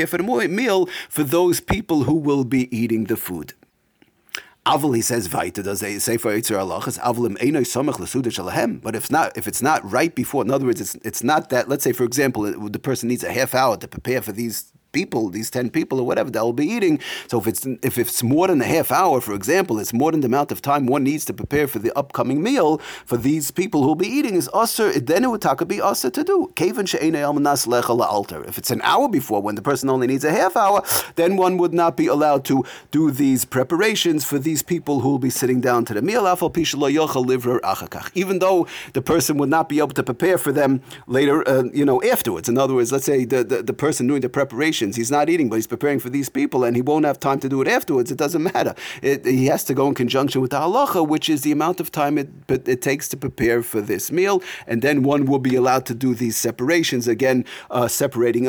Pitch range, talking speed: 125-155 Hz, 220 wpm